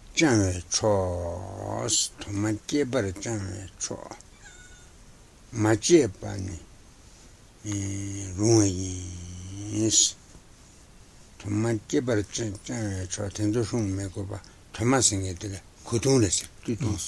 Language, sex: Italian, male